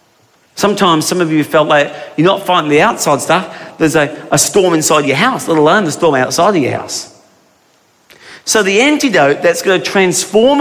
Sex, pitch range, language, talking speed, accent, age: male, 140-225 Hz, English, 190 wpm, British, 40-59